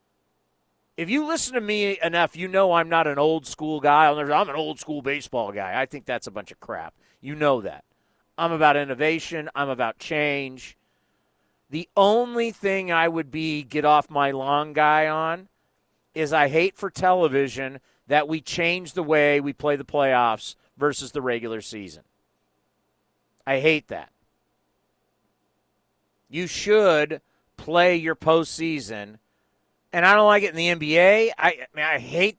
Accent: American